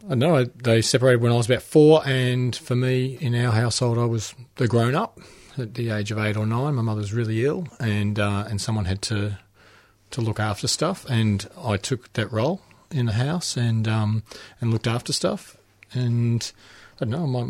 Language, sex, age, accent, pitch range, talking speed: English, male, 40-59, Australian, 100-120 Hz, 205 wpm